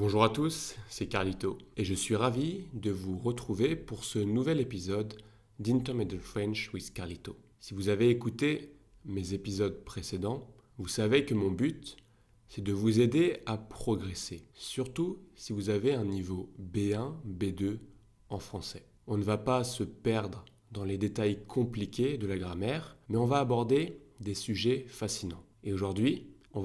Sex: male